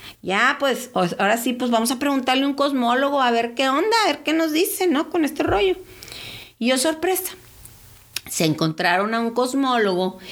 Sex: female